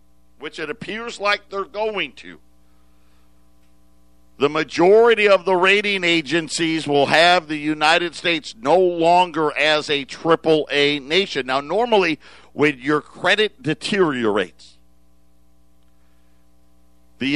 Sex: male